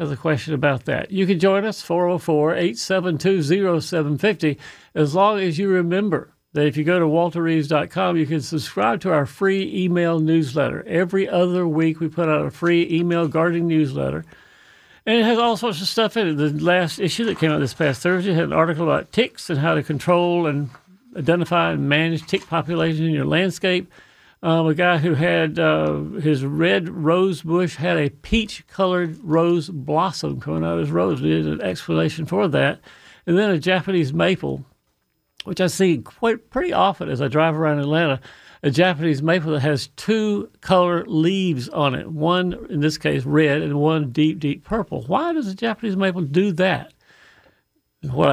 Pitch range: 150-185 Hz